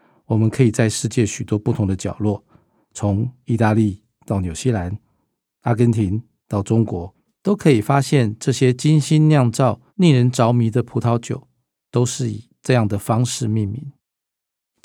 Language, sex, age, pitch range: Chinese, male, 50-69, 105-130 Hz